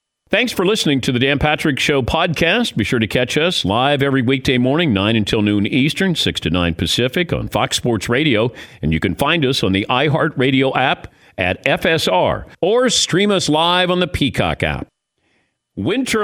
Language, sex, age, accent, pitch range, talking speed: English, male, 50-69, American, 110-155 Hz, 185 wpm